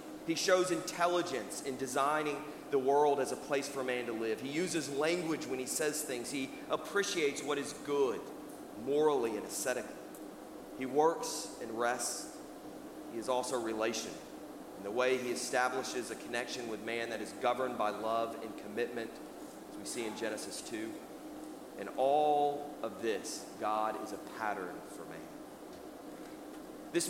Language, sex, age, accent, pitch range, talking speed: English, male, 40-59, American, 125-150 Hz, 155 wpm